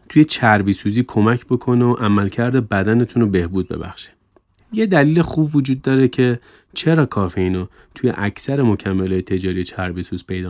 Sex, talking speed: male, 150 wpm